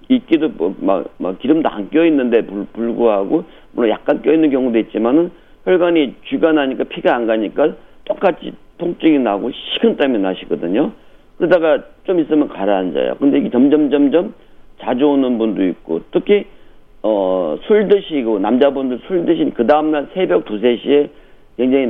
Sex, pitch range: male, 110-170 Hz